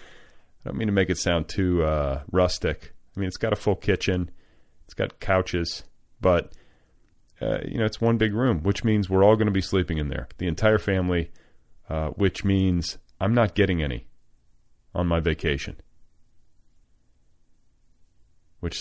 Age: 30-49